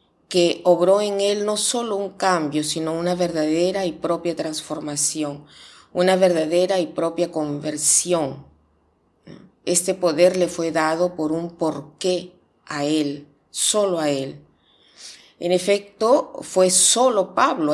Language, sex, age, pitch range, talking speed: Spanish, female, 40-59, 160-190 Hz, 125 wpm